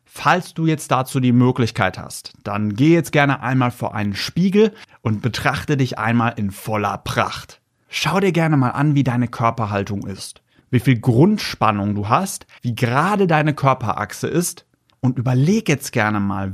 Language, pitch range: German, 115-150 Hz